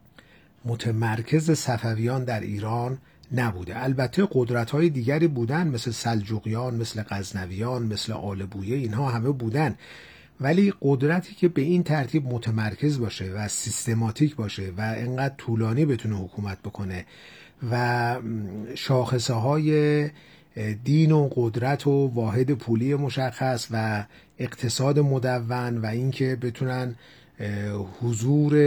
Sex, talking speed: male, 105 wpm